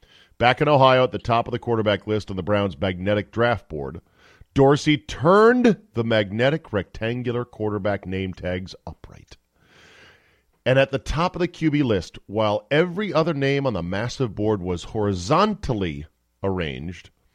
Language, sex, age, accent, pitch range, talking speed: English, male, 40-59, American, 95-140 Hz, 150 wpm